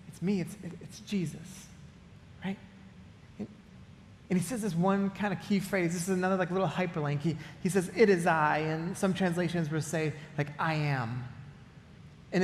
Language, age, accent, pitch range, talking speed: English, 30-49, American, 160-205 Hz, 180 wpm